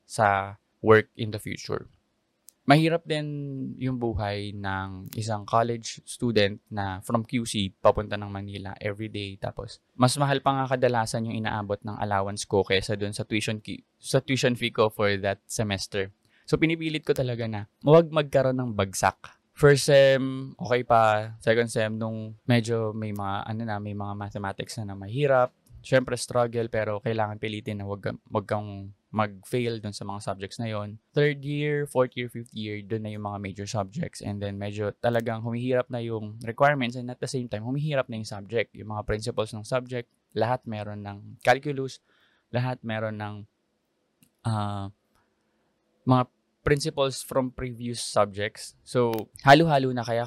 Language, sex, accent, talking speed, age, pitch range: English, male, Filipino, 165 wpm, 20-39, 105-125 Hz